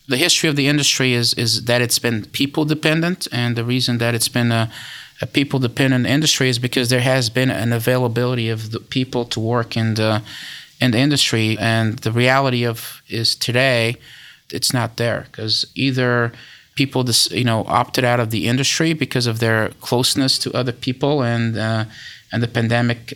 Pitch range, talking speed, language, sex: 115-135 Hz, 185 wpm, English, male